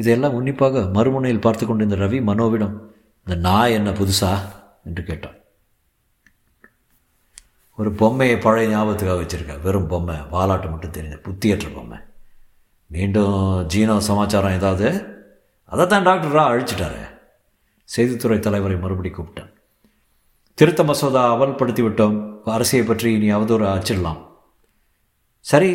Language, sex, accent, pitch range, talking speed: Tamil, male, native, 100-125 Hz, 105 wpm